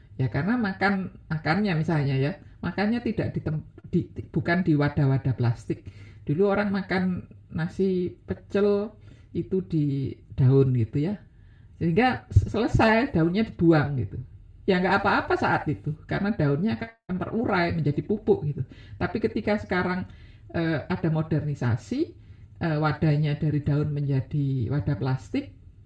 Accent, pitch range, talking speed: native, 135-185 Hz, 130 wpm